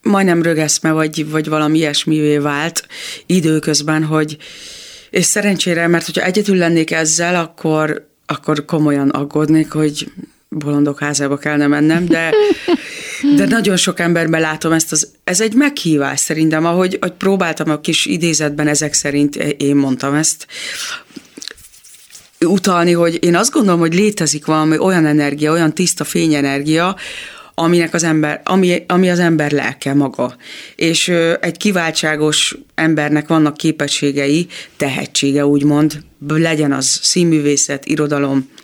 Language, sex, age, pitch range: Hungarian, female, 30-49, 150-170 Hz